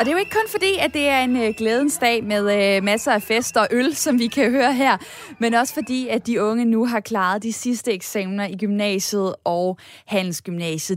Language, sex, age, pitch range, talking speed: Danish, female, 20-39, 210-280 Hz, 225 wpm